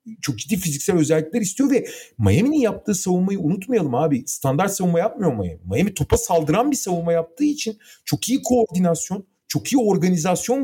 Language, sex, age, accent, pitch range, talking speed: Turkish, male, 40-59, native, 140-215 Hz, 160 wpm